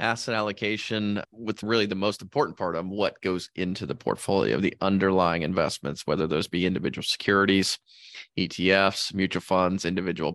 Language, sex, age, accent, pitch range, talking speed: English, male, 30-49, American, 95-115 Hz, 155 wpm